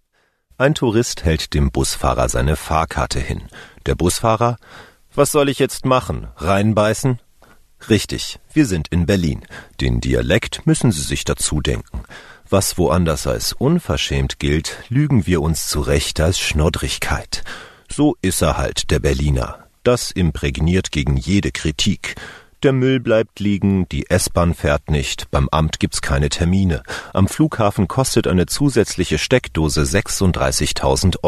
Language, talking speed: German, 135 wpm